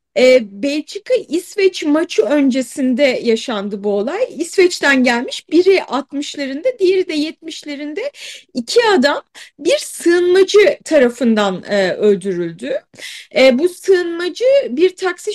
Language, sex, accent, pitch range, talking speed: Turkish, female, native, 260-365 Hz, 90 wpm